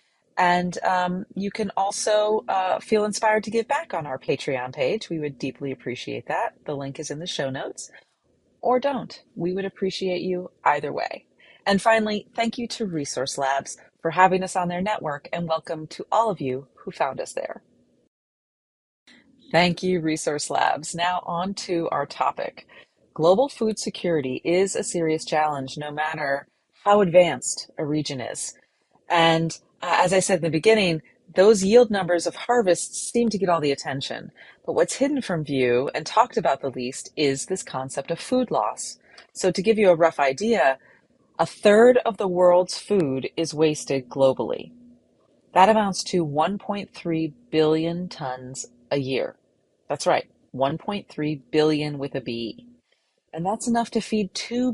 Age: 30-49